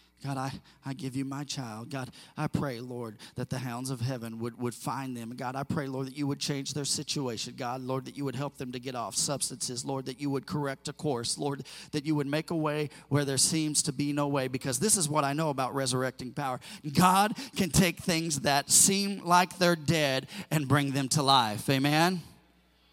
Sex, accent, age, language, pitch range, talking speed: male, American, 40-59, English, 140-185 Hz, 225 wpm